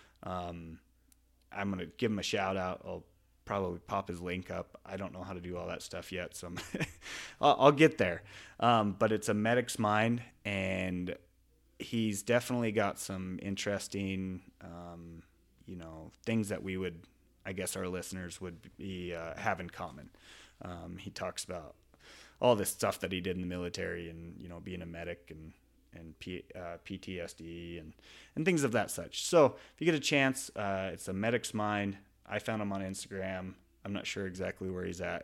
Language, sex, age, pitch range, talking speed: English, male, 30-49, 90-100 Hz, 190 wpm